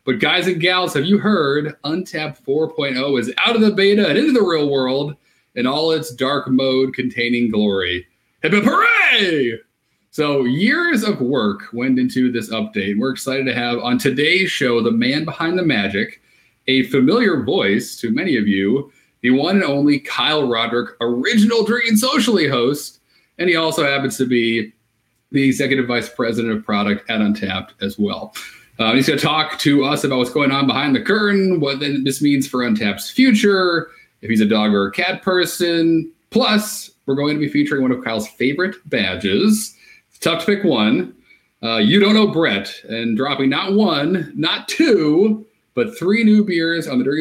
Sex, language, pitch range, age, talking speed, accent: male, English, 125-195 Hz, 30-49, 180 wpm, American